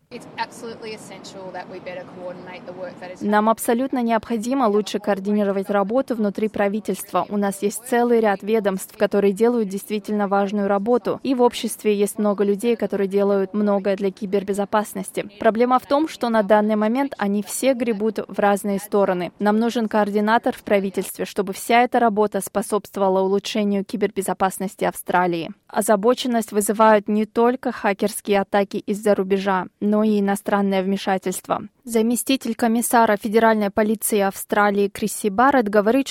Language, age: Russian, 20-39